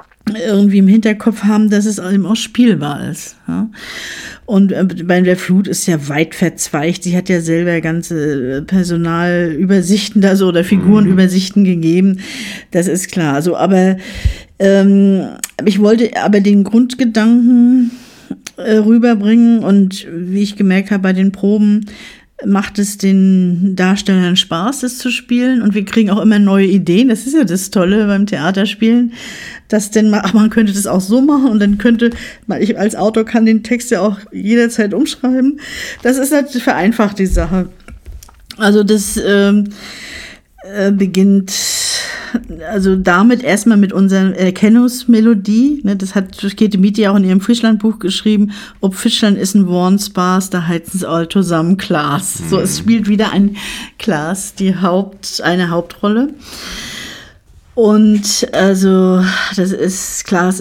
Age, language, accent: 50-69, German, German